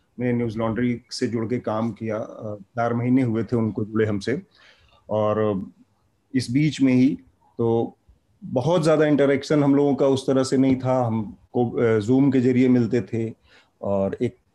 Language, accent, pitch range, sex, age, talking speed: Hindi, native, 115-130 Hz, male, 30-49, 165 wpm